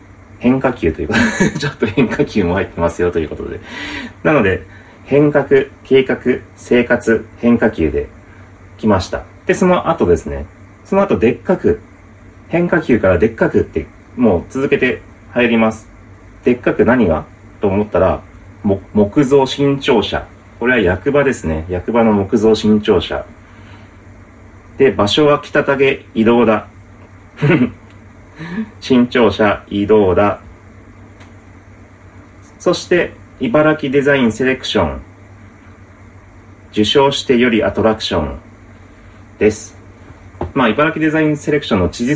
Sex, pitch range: male, 95-120 Hz